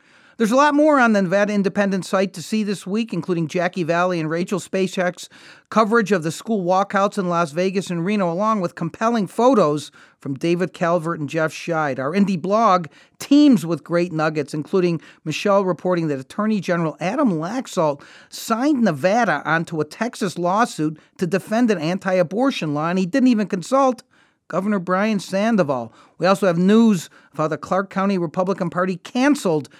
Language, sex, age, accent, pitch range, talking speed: English, male, 40-59, American, 165-225 Hz, 170 wpm